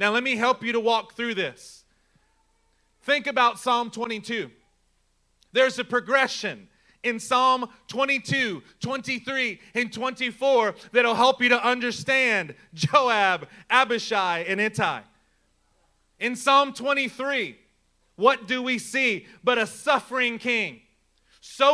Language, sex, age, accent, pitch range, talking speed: English, male, 30-49, American, 225-270 Hz, 120 wpm